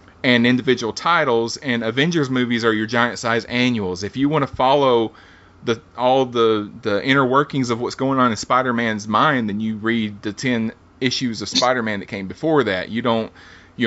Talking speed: 200 wpm